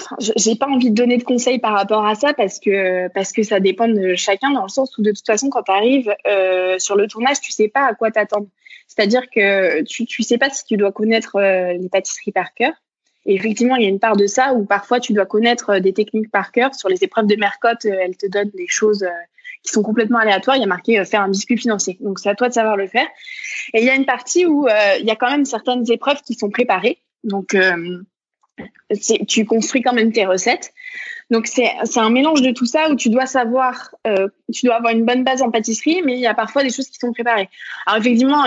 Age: 20-39